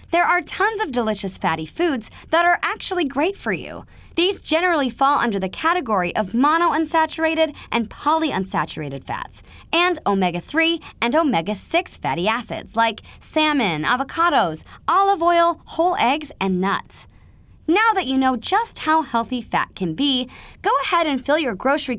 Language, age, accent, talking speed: English, 20-39, American, 150 wpm